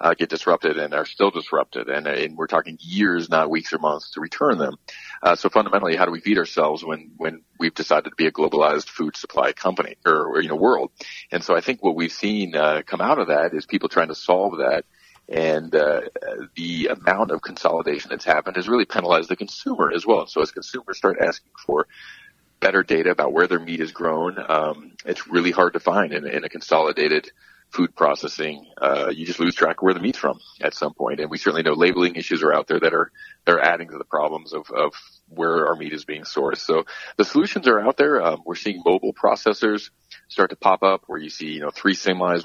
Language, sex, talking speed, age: English, male, 230 wpm, 40-59